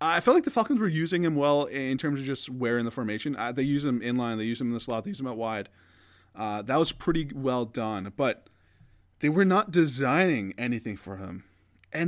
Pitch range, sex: 105-145 Hz, male